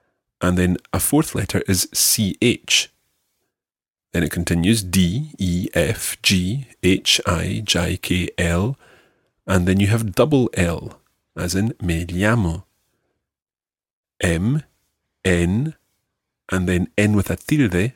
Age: 40-59